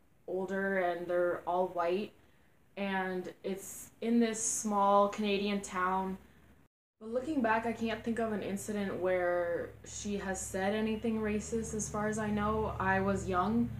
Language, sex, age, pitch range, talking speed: English, female, 20-39, 185-220 Hz, 150 wpm